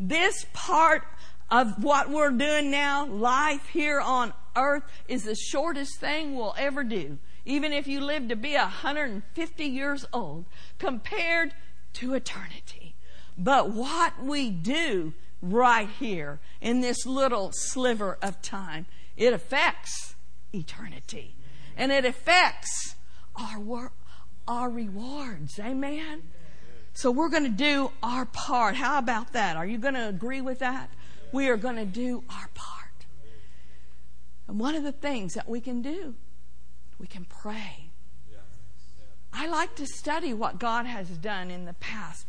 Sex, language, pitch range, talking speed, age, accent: female, English, 180-275 Hz, 140 wpm, 50-69, American